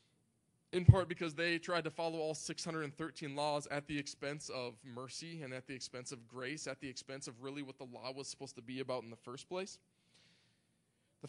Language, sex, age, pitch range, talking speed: English, male, 20-39, 145-185 Hz, 205 wpm